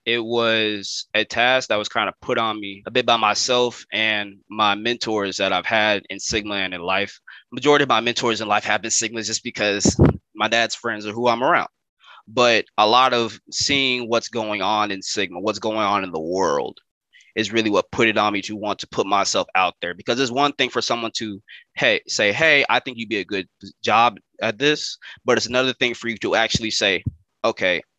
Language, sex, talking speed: English, male, 220 wpm